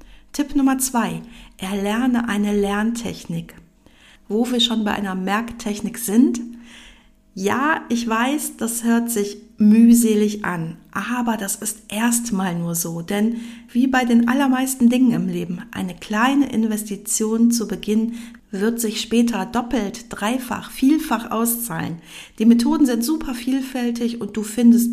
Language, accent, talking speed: German, German, 130 wpm